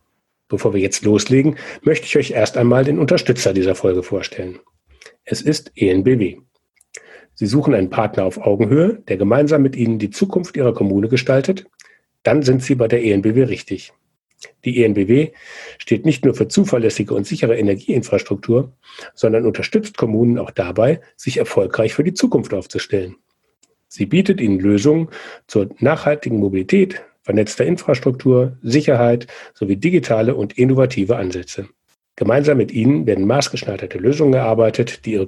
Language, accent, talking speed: German, German, 145 wpm